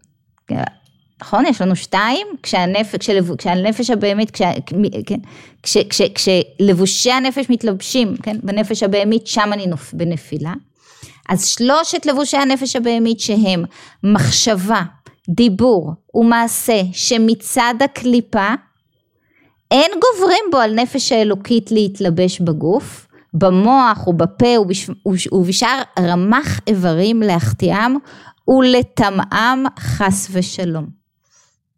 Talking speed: 100 wpm